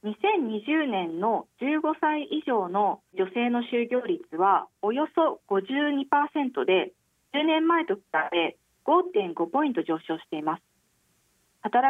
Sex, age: female, 40-59